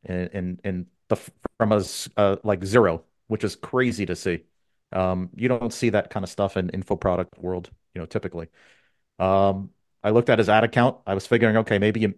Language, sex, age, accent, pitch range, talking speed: English, male, 40-59, American, 95-110 Hz, 210 wpm